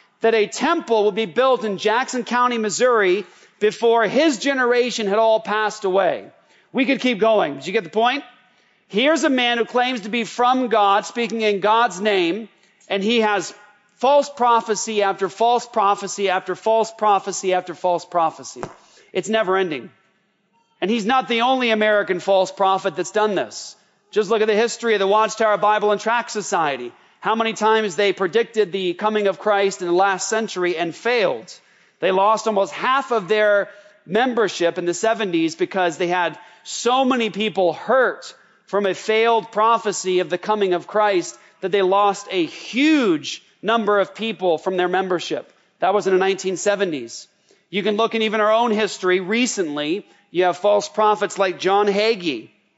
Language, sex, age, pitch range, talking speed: English, male, 40-59, 195-230 Hz, 170 wpm